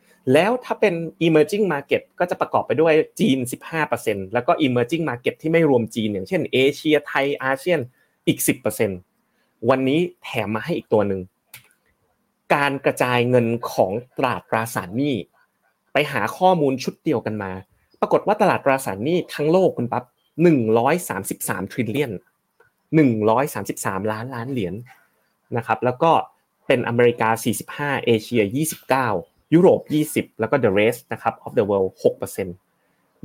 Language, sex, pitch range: Thai, male, 115-165 Hz